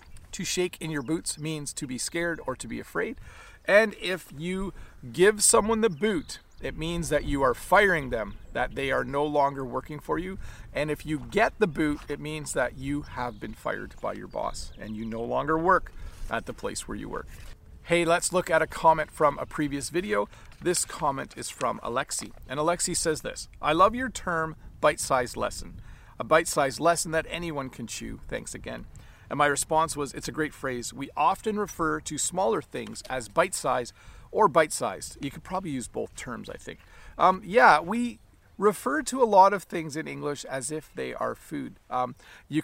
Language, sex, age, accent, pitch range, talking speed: English, male, 40-59, American, 130-165 Hz, 195 wpm